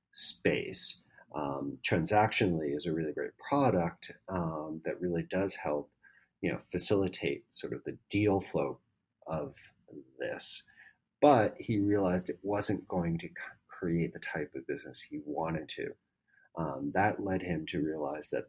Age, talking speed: 40-59, 145 wpm